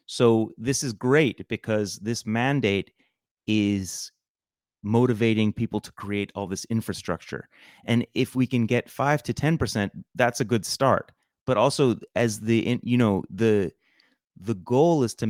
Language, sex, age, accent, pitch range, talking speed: English, male, 30-49, American, 105-125 Hz, 150 wpm